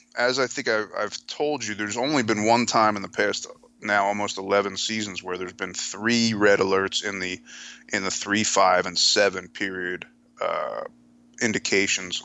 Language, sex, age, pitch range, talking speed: English, male, 30-49, 90-110 Hz, 170 wpm